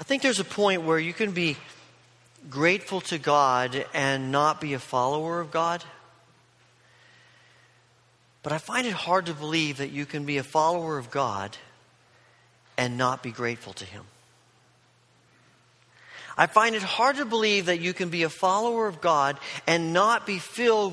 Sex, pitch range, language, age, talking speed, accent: male, 135-210 Hz, English, 40-59, 165 wpm, American